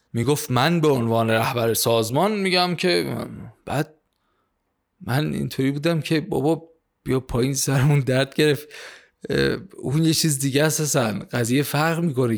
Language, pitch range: Persian, 115-150 Hz